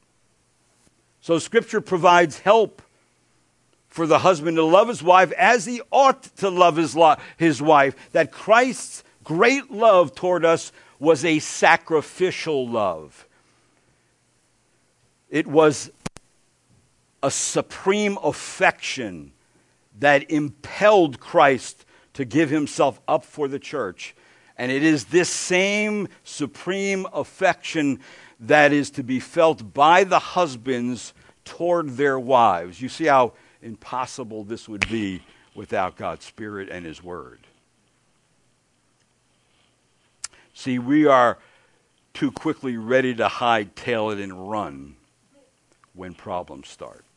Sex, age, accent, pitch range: male, 60-79, American, 115-175 Hz